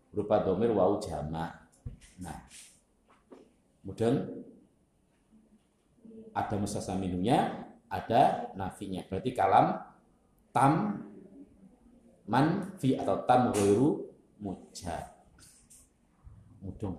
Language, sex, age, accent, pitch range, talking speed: Indonesian, male, 50-69, native, 100-135 Hz, 65 wpm